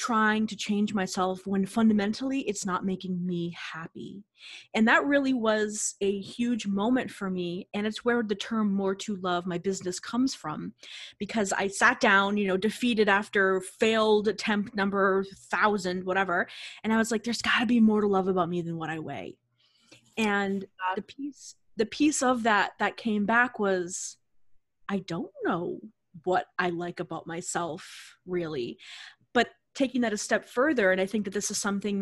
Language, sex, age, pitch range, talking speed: English, female, 30-49, 185-225 Hz, 175 wpm